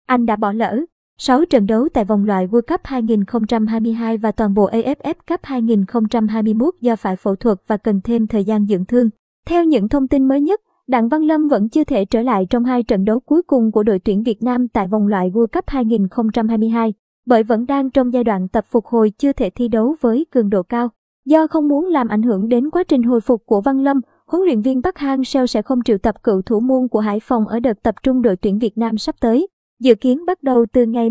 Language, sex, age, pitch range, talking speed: Vietnamese, male, 20-39, 220-275 Hz, 240 wpm